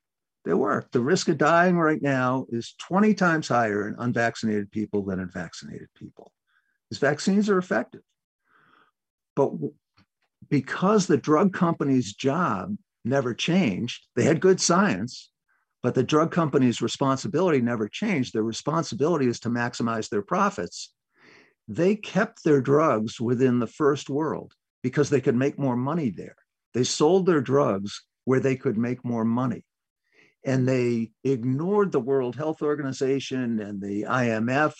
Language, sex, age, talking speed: English, male, 50-69, 145 wpm